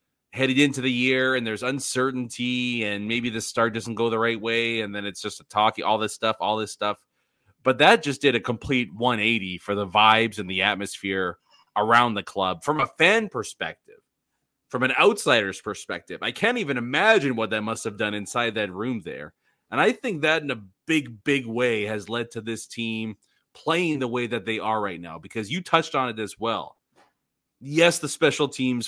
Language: English